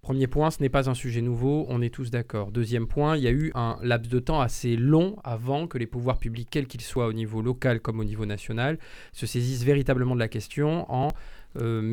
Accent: French